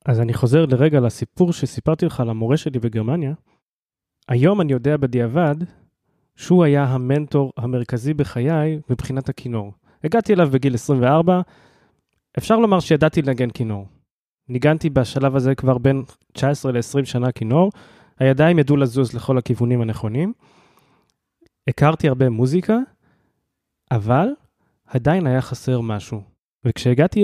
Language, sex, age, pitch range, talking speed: Hebrew, male, 20-39, 125-155 Hz, 120 wpm